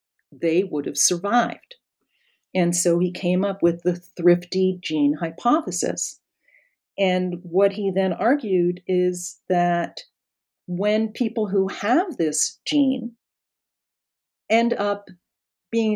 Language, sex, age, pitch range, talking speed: English, female, 50-69, 170-210 Hz, 115 wpm